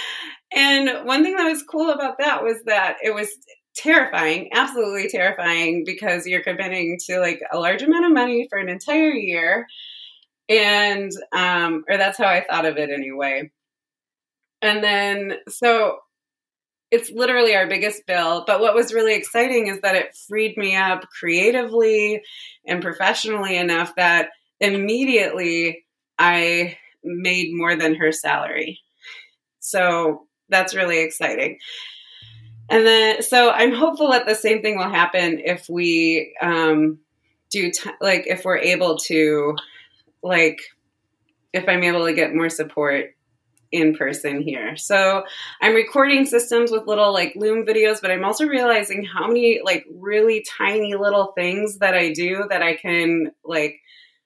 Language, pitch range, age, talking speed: English, 165-220 Hz, 20-39, 145 wpm